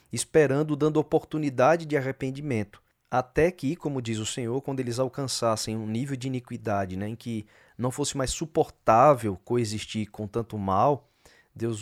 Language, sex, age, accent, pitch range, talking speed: Portuguese, male, 20-39, Brazilian, 115-155 Hz, 150 wpm